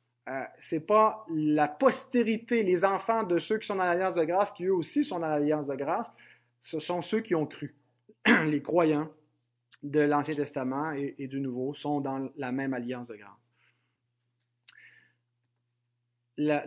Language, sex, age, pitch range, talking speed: French, male, 30-49, 125-180 Hz, 170 wpm